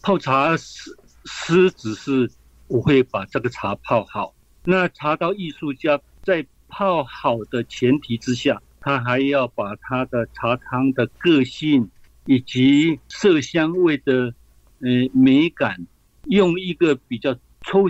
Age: 50-69